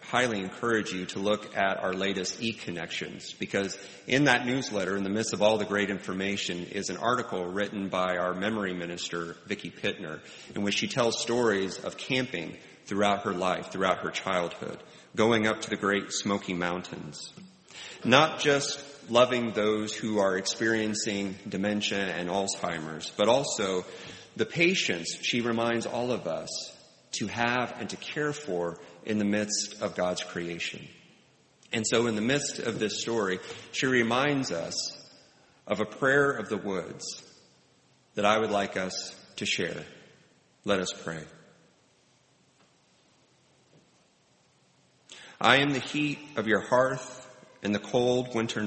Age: 30-49